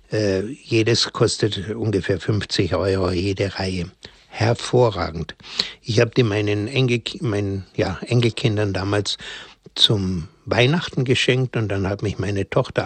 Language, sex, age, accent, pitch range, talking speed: German, male, 60-79, German, 105-130 Hz, 120 wpm